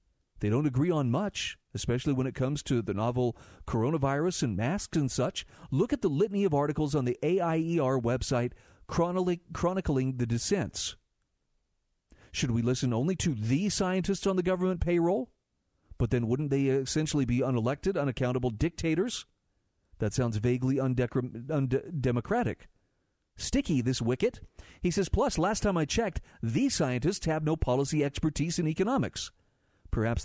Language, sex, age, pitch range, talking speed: English, male, 40-59, 125-170 Hz, 145 wpm